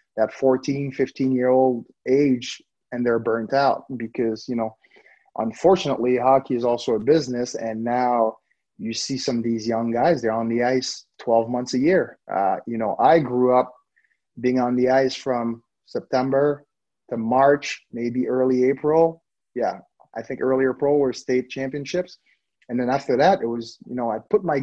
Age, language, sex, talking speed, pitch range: 30-49, English, male, 170 wpm, 120-140 Hz